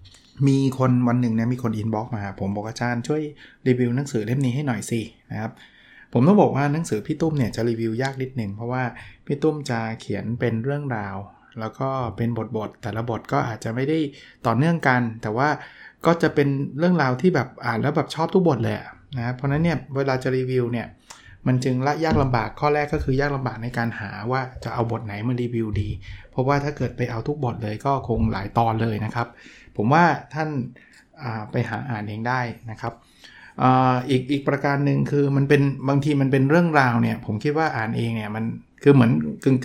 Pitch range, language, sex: 115-140 Hz, Thai, male